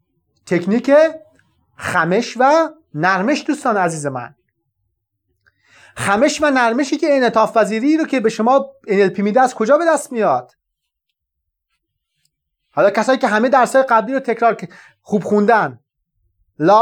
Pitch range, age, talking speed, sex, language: 205-280 Hz, 30-49, 130 wpm, male, Persian